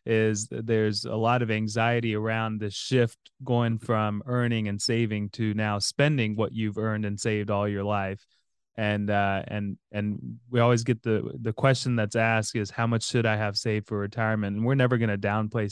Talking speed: 200 wpm